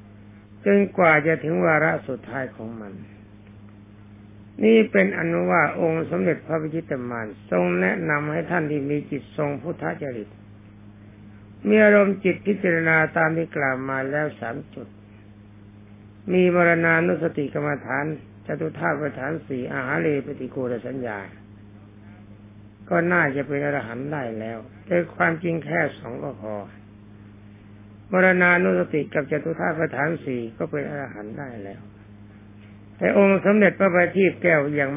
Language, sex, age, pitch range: Thai, male, 60-79, 105-165 Hz